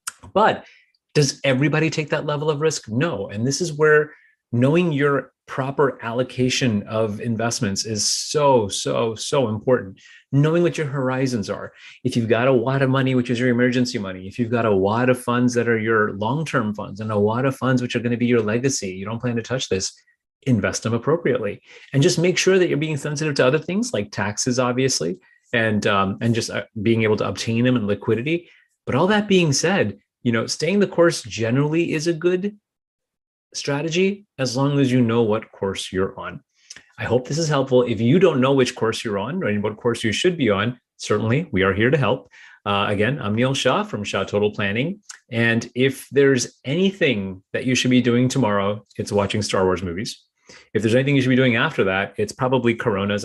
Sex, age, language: male, 30-49, English